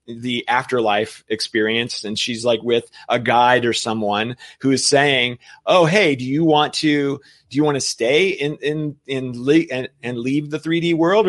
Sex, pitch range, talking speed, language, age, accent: male, 125-175 Hz, 185 wpm, English, 30-49, American